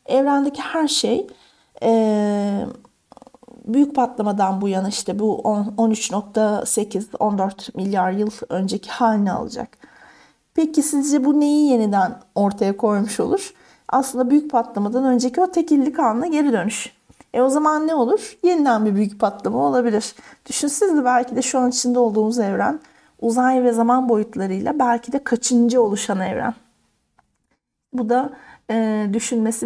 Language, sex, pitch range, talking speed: Turkish, female, 220-285 Hz, 130 wpm